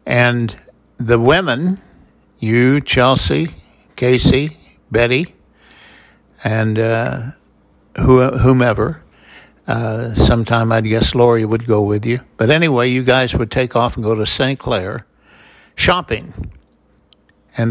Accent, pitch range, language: American, 115-130 Hz, English